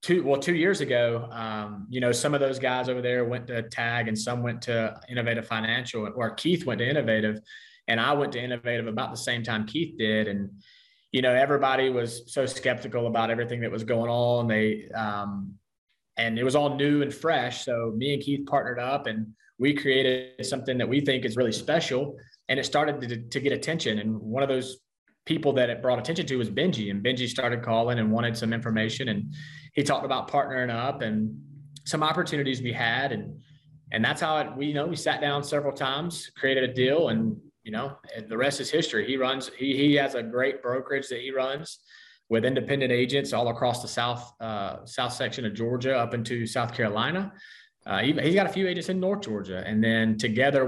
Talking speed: 215 wpm